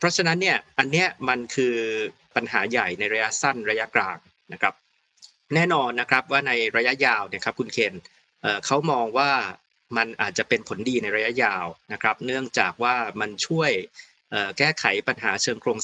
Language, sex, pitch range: Thai, male, 120-145 Hz